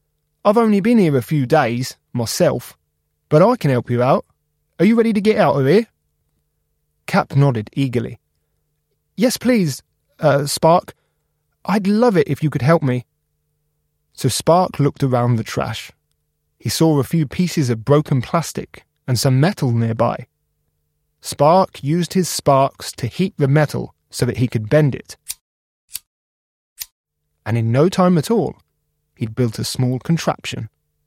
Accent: British